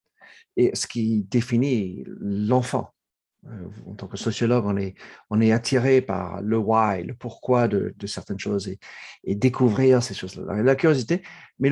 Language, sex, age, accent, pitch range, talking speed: French, male, 50-69, French, 110-145 Hz, 160 wpm